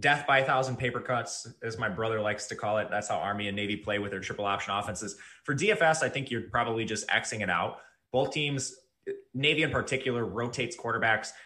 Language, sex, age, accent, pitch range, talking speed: English, male, 20-39, American, 105-135 Hz, 210 wpm